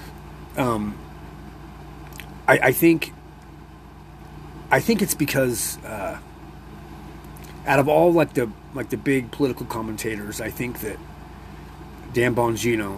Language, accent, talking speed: English, American, 110 wpm